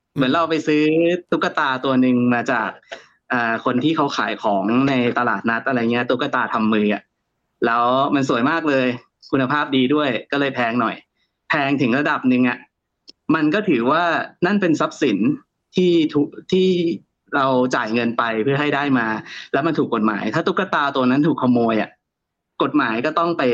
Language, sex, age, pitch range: Thai, male, 20-39, 120-150 Hz